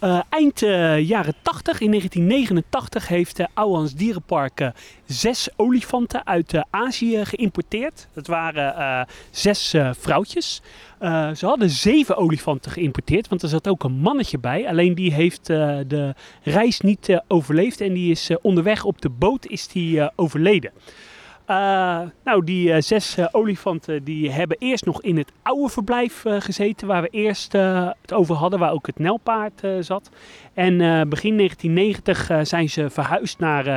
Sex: male